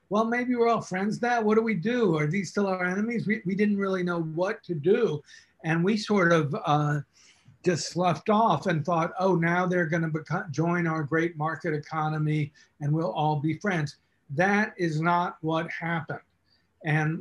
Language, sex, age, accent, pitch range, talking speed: English, male, 50-69, American, 155-185 Hz, 190 wpm